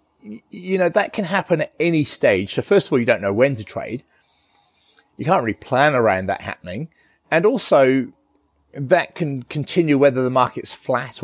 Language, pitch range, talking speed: English, 110-145 Hz, 180 wpm